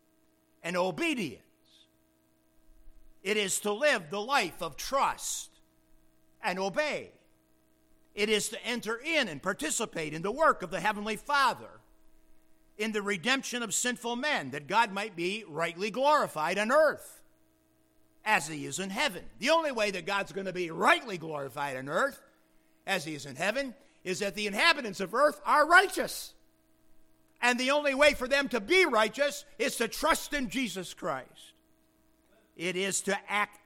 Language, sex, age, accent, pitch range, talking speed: English, male, 50-69, American, 135-220 Hz, 160 wpm